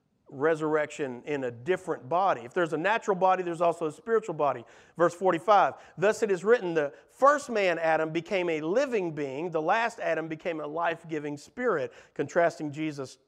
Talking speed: 170 wpm